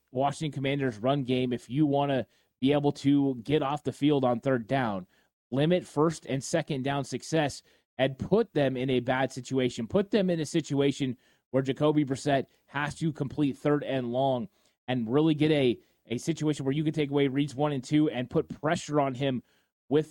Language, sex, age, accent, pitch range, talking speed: English, male, 30-49, American, 130-150 Hz, 195 wpm